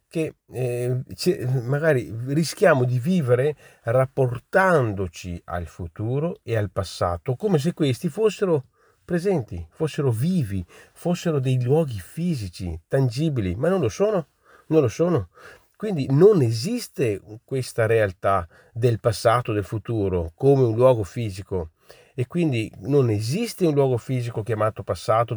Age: 40-59